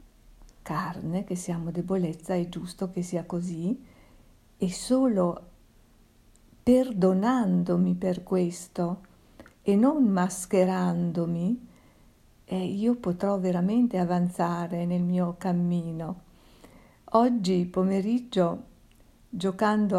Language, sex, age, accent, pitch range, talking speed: Italian, female, 50-69, native, 180-215 Hz, 85 wpm